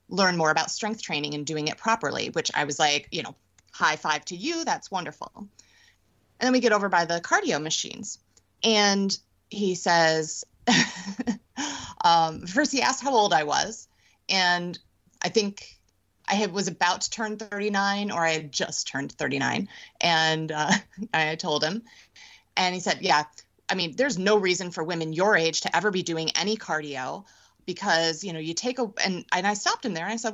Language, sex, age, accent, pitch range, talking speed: English, female, 30-49, American, 170-225 Hz, 190 wpm